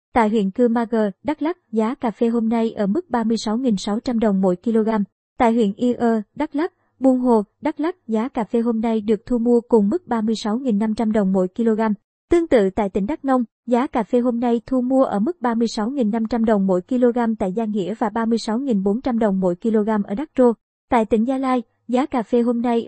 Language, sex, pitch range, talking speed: Vietnamese, male, 220-255 Hz, 210 wpm